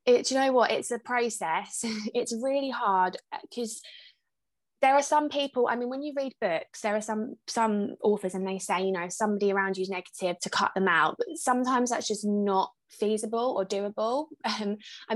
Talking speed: 200 wpm